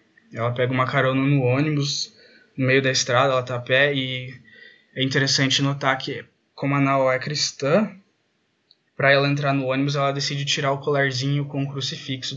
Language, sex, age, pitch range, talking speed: Portuguese, male, 20-39, 130-145 Hz, 180 wpm